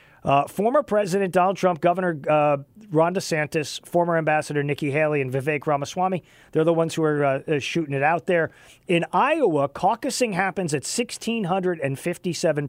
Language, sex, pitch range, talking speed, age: English, male, 140-175 Hz, 150 wpm, 40-59